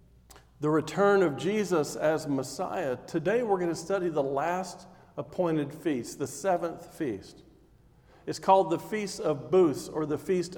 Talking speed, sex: 155 wpm, male